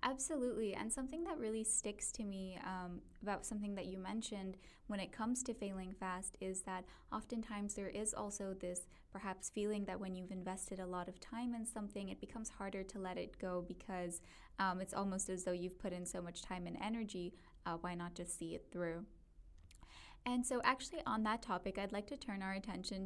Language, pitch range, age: English, 180-220 Hz, 10-29